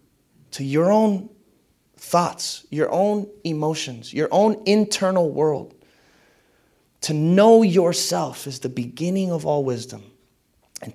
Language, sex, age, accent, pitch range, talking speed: English, male, 30-49, American, 145-210 Hz, 115 wpm